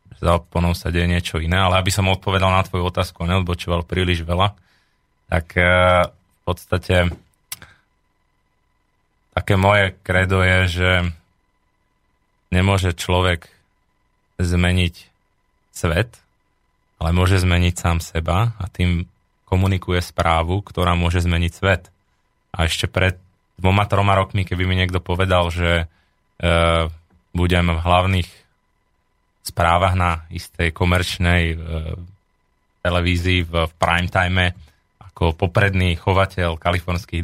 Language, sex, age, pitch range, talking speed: Slovak, male, 20-39, 85-95 Hz, 110 wpm